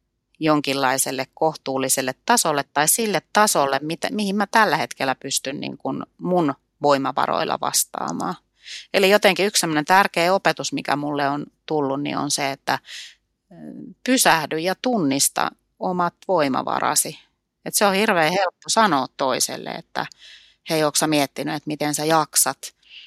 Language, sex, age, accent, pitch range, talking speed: Finnish, female, 30-49, native, 135-160 Hz, 130 wpm